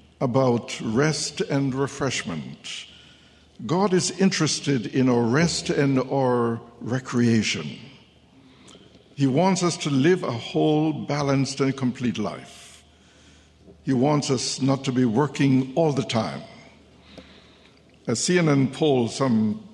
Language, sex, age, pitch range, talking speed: English, male, 60-79, 110-150 Hz, 115 wpm